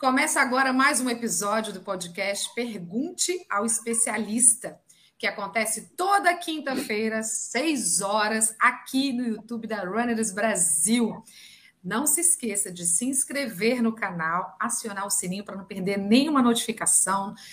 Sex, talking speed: female, 130 wpm